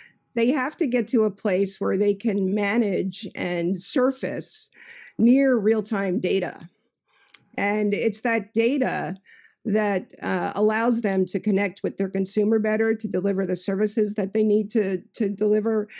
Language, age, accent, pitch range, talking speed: English, 50-69, American, 205-245 Hz, 150 wpm